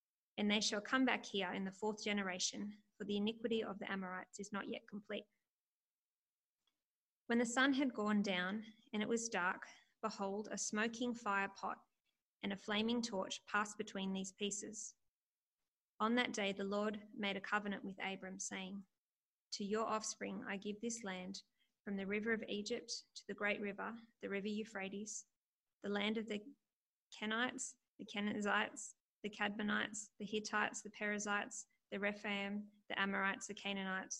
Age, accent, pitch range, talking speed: 20-39, Australian, 200-220 Hz, 160 wpm